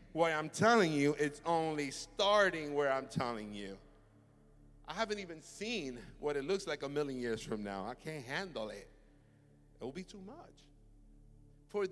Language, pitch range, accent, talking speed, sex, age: English, 135-215 Hz, American, 170 wpm, male, 50-69